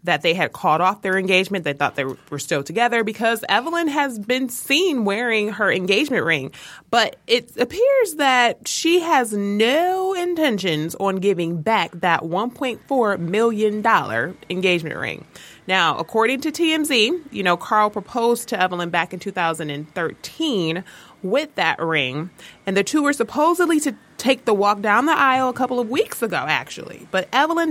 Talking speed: 160 wpm